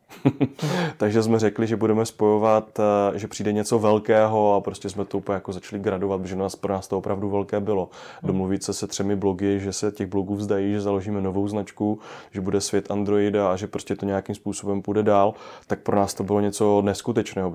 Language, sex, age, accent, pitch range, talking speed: Czech, male, 20-39, native, 95-110 Hz, 200 wpm